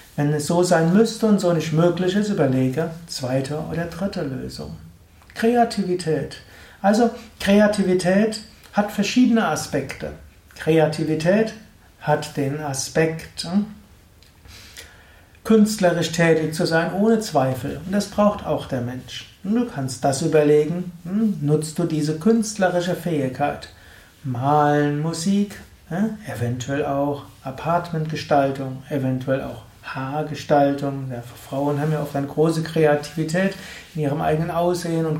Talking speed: 115 wpm